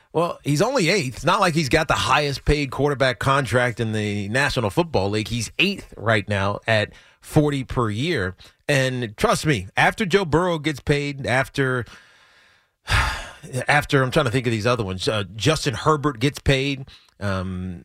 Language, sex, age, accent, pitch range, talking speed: English, male, 30-49, American, 115-155 Hz, 170 wpm